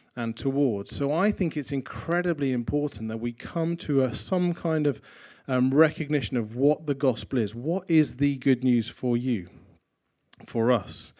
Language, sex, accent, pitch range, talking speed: English, male, British, 120-150 Hz, 165 wpm